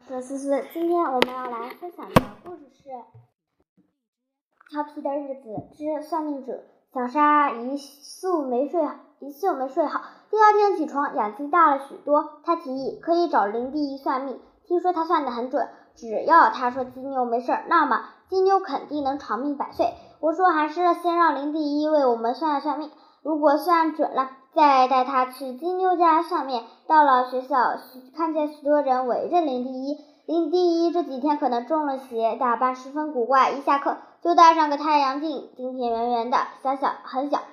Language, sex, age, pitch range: Chinese, male, 10-29, 255-315 Hz